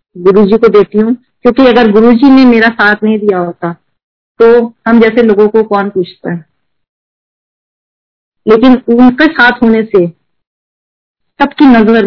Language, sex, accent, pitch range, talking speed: Hindi, female, native, 190-235 Hz, 130 wpm